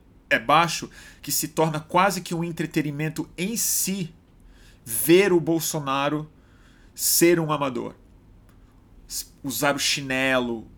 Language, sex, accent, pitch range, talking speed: Portuguese, male, Brazilian, 115-160 Hz, 110 wpm